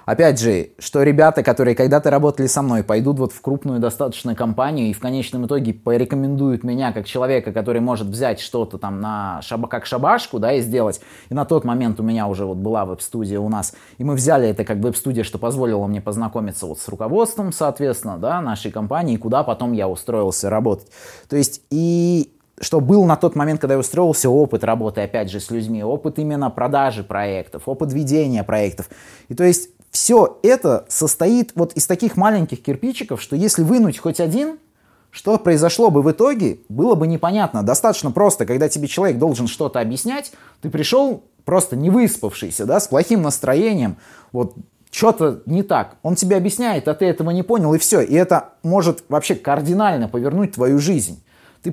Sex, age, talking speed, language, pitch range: male, 20-39, 180 wpm, Russian, 115-185 Hz